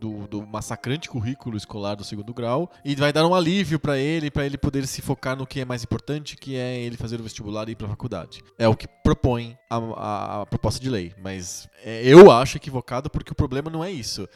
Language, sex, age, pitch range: Portuguese, male, 20-39, 115-155 Hz